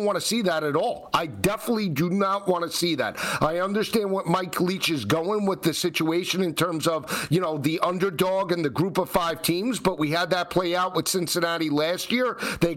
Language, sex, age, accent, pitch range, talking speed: English, male, 50-69, American, 175-235 Hz, 225 wpm